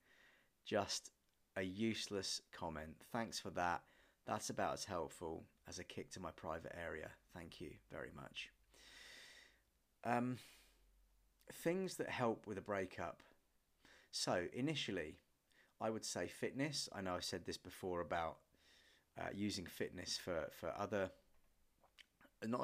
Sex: male